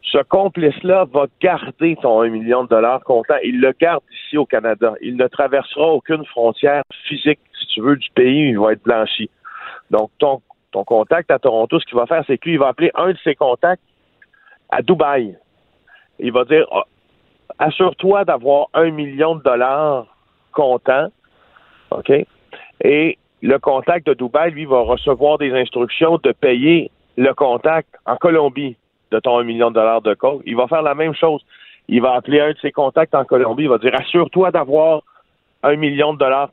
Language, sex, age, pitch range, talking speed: French, male, 50-69, 125-165 Hz, 185 wpm